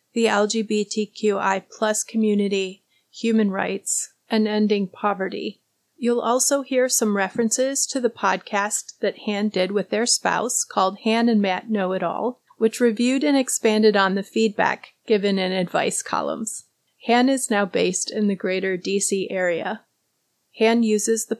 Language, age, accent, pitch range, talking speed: English, 30-49, American, 200-230 Hz, 150 wpm